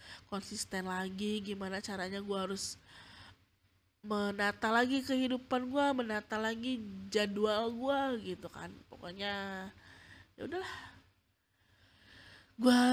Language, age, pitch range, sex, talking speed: Indonesian, 20-39, 185-215 Hz, female, 95 wpm